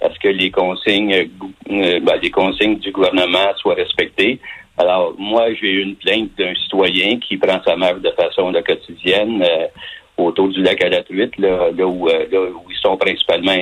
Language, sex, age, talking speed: French, male, 60-79, 195 wpm